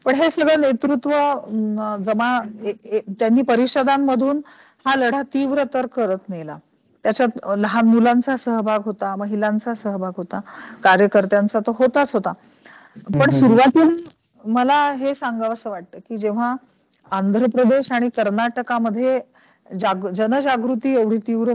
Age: 40-59